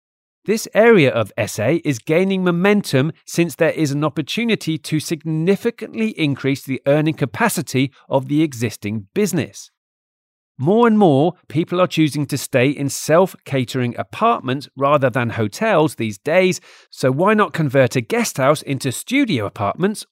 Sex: male